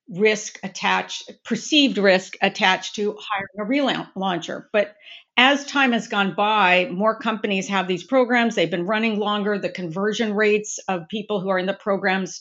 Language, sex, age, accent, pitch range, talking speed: English, female, 50-69, American, 190-230 Hz, 165 wpm